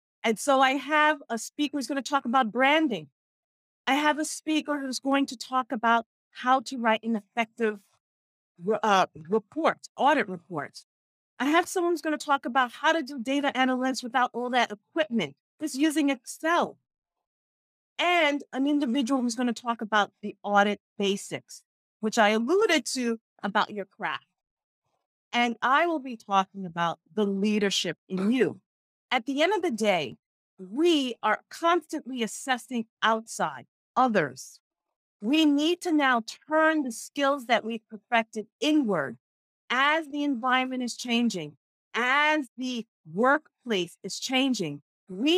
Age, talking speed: 40-59, 145 wpm